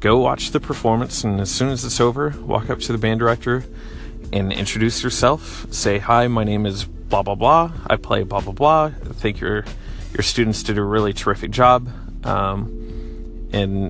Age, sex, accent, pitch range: 30-49, male, American, 95-115 Hz